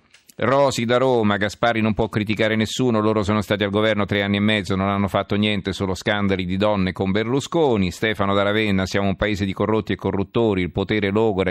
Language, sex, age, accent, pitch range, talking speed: Italian, male, 40-59, native, 95-110 Hz, 210 wpm